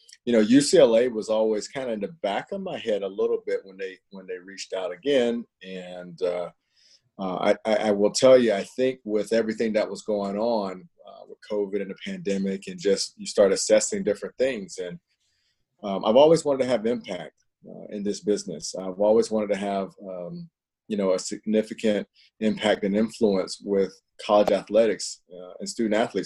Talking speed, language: 190 wpm, English